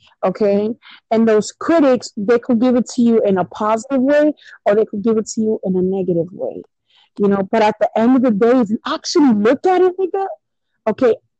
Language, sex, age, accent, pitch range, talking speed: English, female, 40-59, American, 220-315 Hz, 215 wpm